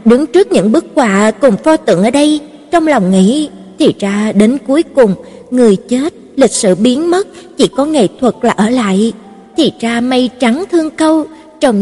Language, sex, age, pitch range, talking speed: Vietnamese, female, 20-39, 220-305 Hz, 195 wpm